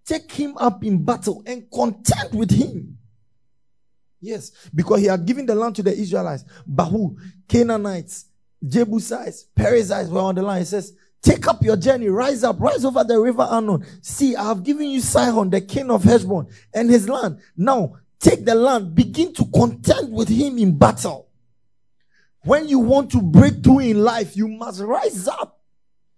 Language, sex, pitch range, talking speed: English, male, 145-230 Hz, 175 wpm